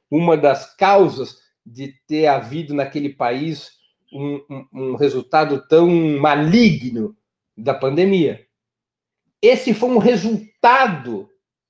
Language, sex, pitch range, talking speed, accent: Portuguese, male, 140-210 Hz, 95 wpm, Brazilian